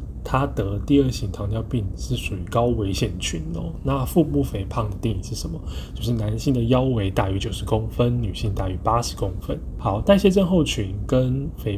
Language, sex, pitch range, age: Chinese, male, 95-125 Hz, 10-29